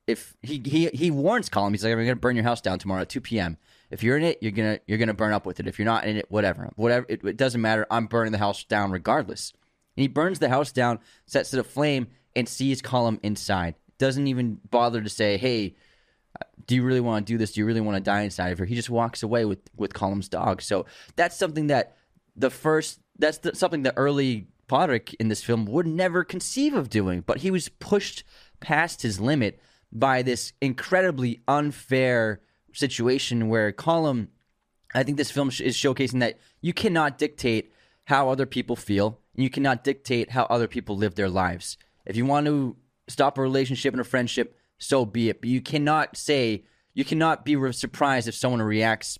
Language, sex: English, male